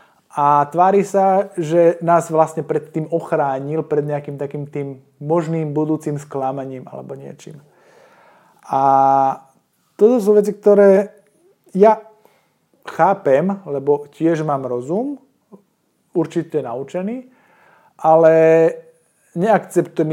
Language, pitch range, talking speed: Slovak, 145-195 Hz, 100 wpm